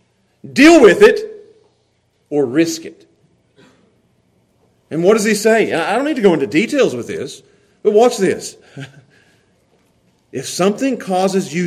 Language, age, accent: English, 40-59, American